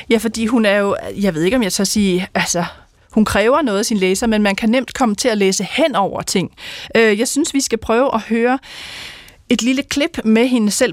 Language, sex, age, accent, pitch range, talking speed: Danish, female, 30-49, native, 185-230 Hz, 230 wpm